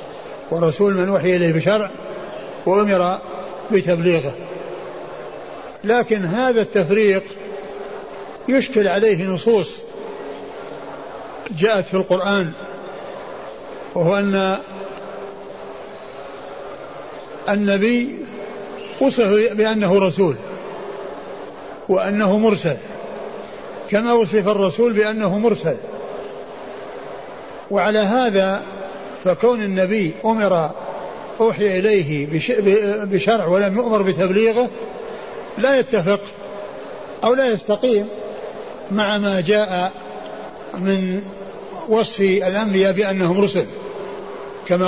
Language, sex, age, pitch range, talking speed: Arabic, male, 60-79, 190-225 Hz, 70 wpm